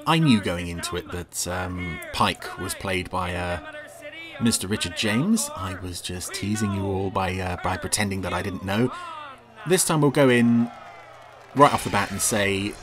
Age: 30-49